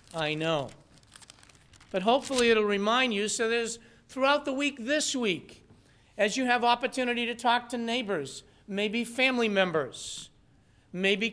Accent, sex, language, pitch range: American, male, English, 145-235 Hz